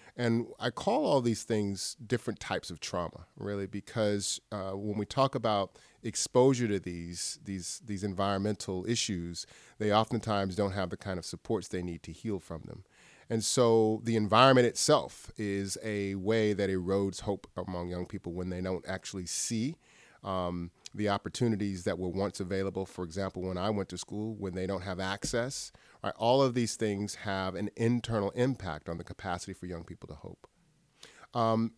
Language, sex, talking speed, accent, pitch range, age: English, male, 175 wpm, American, 95-115 Hz, 30-49